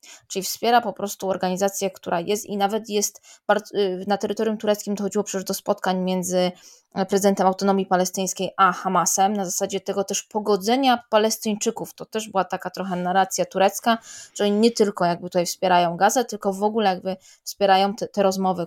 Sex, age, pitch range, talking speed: female, 20-39, 180-210 Hz, 170 wpm